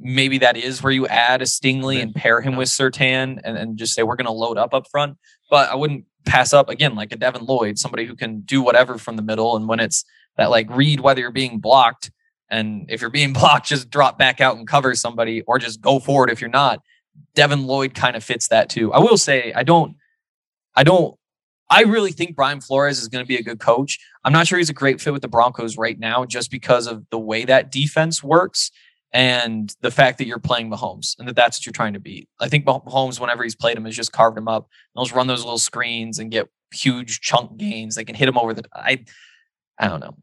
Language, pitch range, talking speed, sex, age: English, 115-140 Hz, 245 wpm, male, 20-39